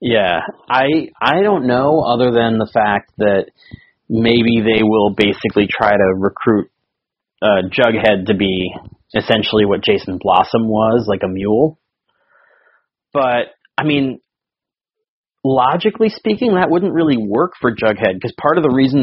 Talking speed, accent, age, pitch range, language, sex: 140 wpm, American, 30-49, 105-130 Hz, English, male